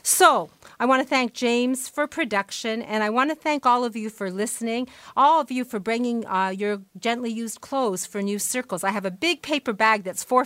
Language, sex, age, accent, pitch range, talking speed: English, female, 50-69, American, 195-250 Hz, 225 wpm